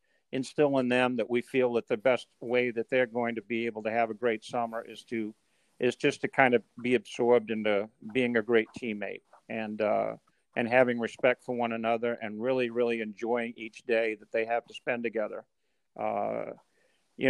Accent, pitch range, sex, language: American, 115-130 Hz, male, English